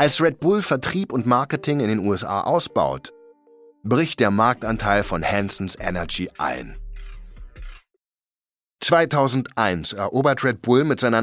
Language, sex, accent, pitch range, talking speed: German, male, German, 105-145 Hz, 125 wpm